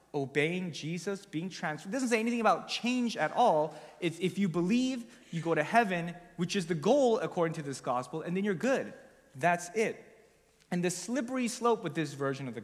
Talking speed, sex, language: 205 wpm, male, English